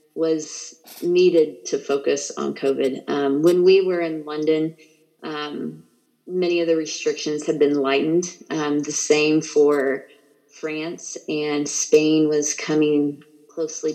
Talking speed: 130 wpm